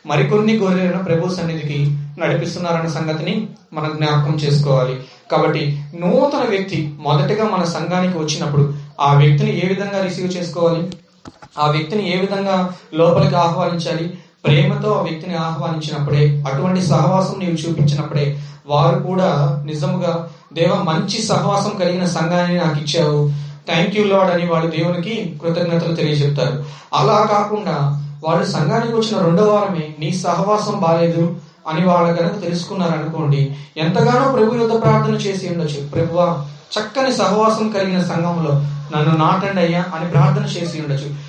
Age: 30-49